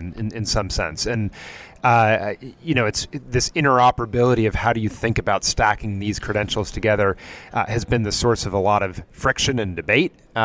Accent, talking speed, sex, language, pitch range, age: American, 190 wpm, male, English, 105-120 Hz, 30-49